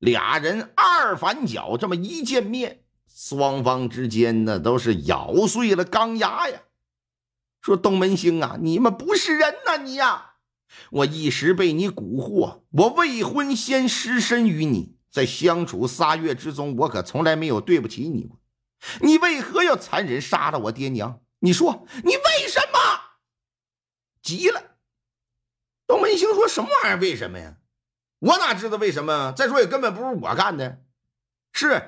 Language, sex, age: Chinese, male, 50-69